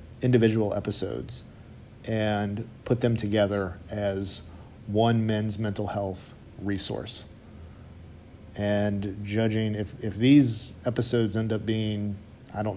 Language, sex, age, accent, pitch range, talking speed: English, male, 40-59, American, 100-115 Hz, 110 wpm